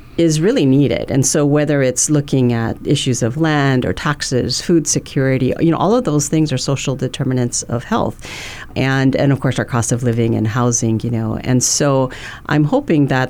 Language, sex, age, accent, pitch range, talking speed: English, female, 40-59, American, 125-155 Hz, 200 wpm